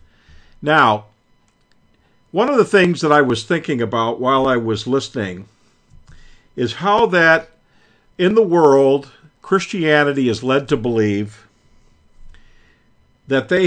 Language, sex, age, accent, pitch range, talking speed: English, male, 50-69, American, 120-165 Hz, 120 wpm